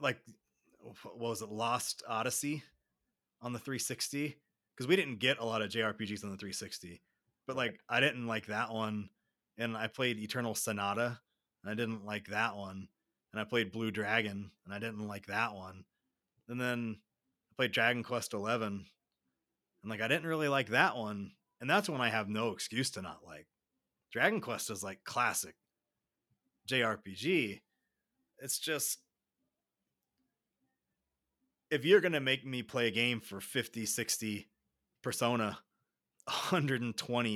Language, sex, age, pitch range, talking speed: English, male, 30-49, 105-125 Hz, 155 wpm